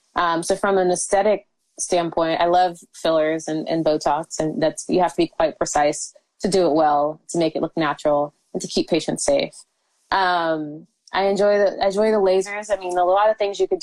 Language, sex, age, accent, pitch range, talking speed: English, female, 20-39, American, 170-210 Hz, 210 wpm